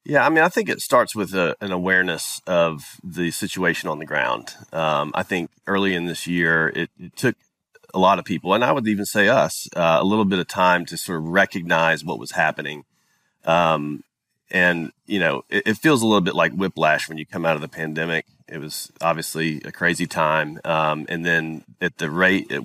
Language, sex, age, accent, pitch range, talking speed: English, male, 30-49, American, 80-105 Hz, 215 wpm